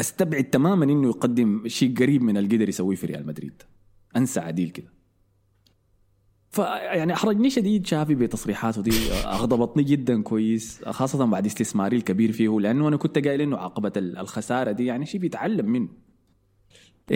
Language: Arabic